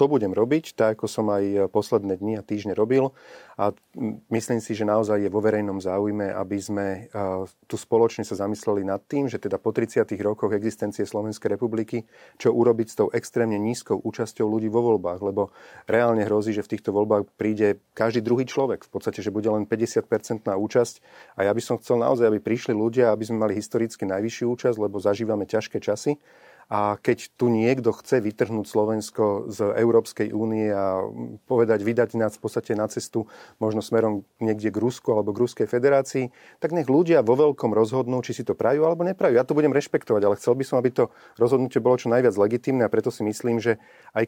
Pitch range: 105-120 Hz